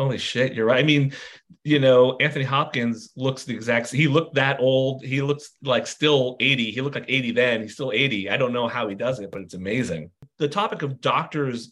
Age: 30-49